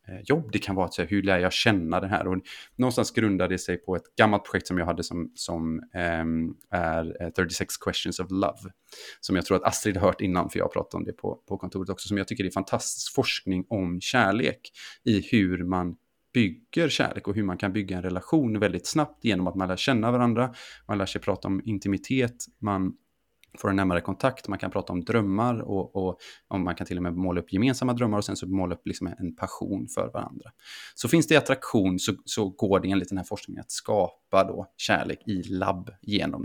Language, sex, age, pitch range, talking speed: Swedish, male, 30-49, 95-115 Hz, 220 wpm